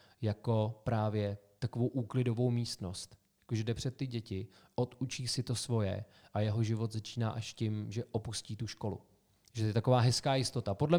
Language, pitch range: Czech, 105-125 Hz